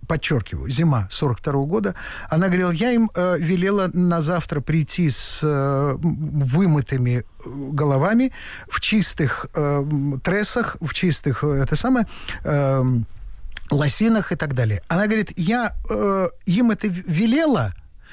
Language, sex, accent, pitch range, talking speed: Russian, male, native, 115-190 Hz, 125 wpm